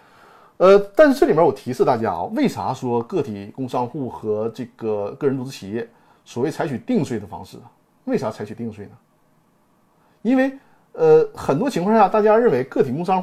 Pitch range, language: 130-210 Hz, Chinese